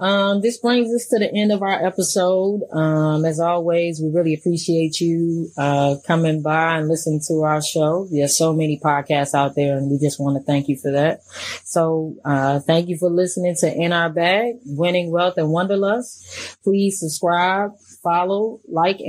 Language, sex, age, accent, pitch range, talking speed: English, female, 20-39, American, 155-180 Hz, 180 wpm